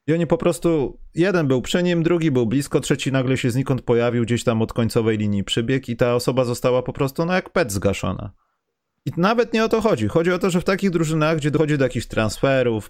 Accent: native